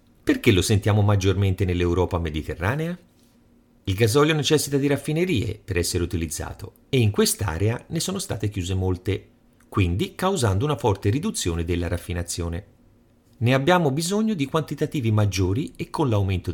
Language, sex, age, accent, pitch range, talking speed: Italian, male, 40-59, native, 90-130 Hz, 140 wpm